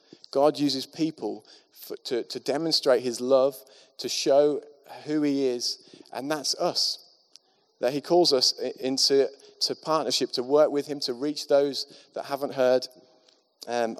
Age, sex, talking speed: 30-49, male, 150 wpm